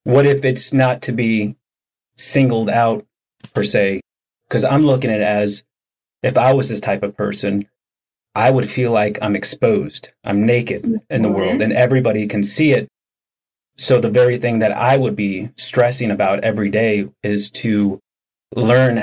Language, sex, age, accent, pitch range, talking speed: English, male, 30-49, American, 105-130 Hz, 170 wpm